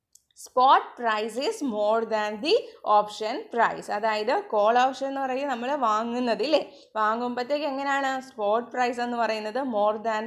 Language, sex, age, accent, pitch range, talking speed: Hindi, female, 20-39, native, 220-270 Hz, 160 wpm